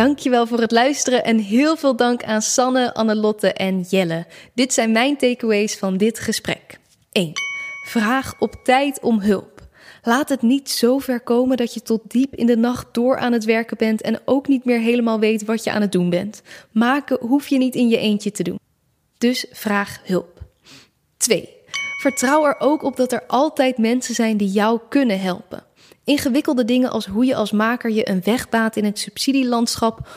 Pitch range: 215-255 Hz